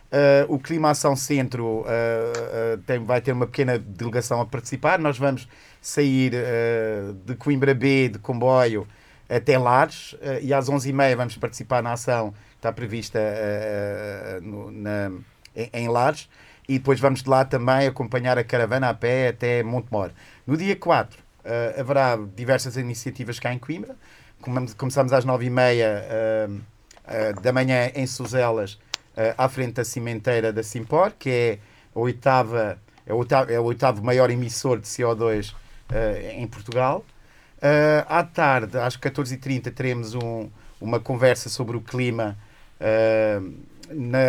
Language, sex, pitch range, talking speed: Portuguese, male, 110-135 Hz, 145 wpm